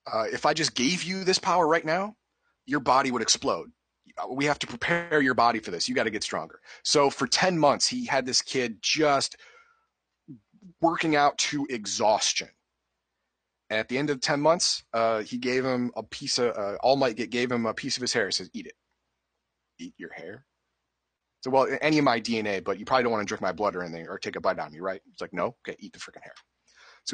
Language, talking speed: English, 235 wpm